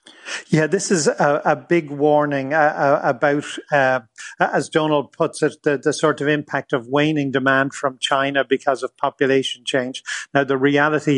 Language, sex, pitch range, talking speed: English, male, 135-150 Hz, 170 wpm